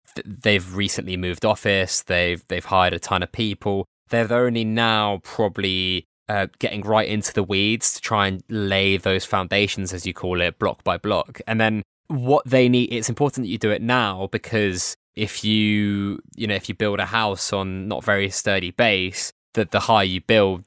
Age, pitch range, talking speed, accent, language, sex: 20-39, 95-105 Hz, 190 wpm, British, English, male